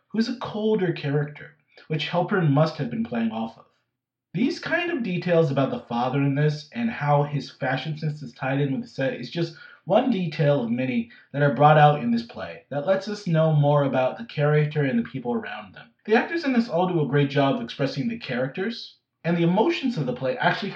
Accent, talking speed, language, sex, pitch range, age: American, 230 wpm, English, male, 135-195 Hz, 30-49